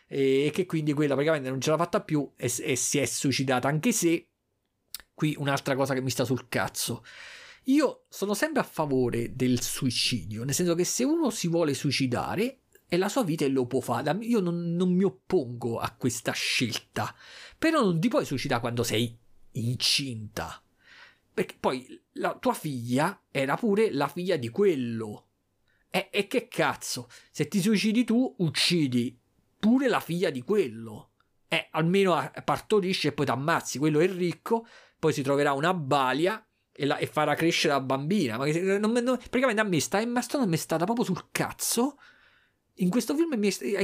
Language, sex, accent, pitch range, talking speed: Italian, male, native, 130-210 Hz, 180 wpm